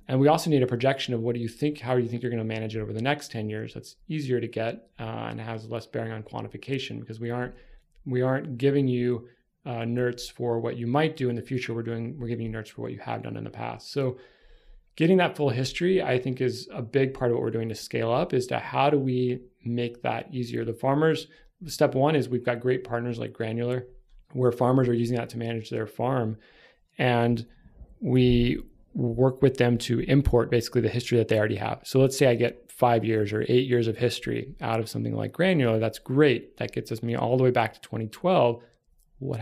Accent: American